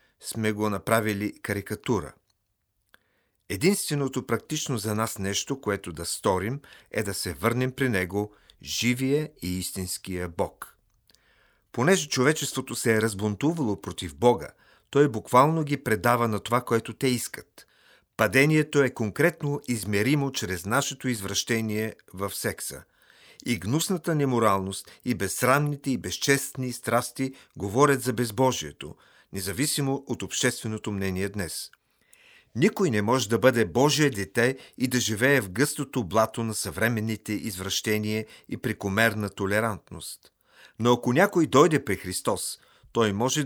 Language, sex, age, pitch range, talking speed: Bulgarian, male, 40-59, 105-130 Hz, 125 wpm